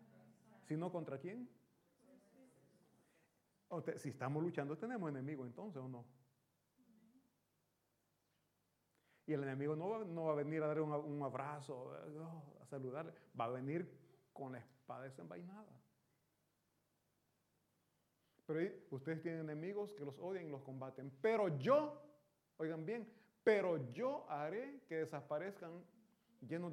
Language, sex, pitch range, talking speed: Italian, male, 145-195 Hz, 125 wpm